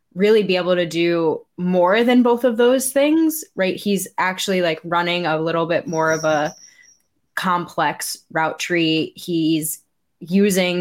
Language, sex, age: English, female, 10-29